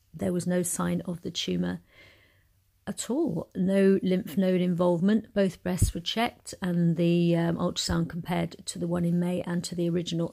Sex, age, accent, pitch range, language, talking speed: female, 40-59, British, 165-185 Hz, English, 180 wpm